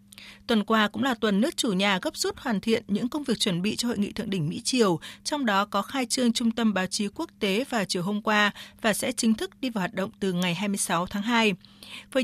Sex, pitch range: female, 190-245 Hz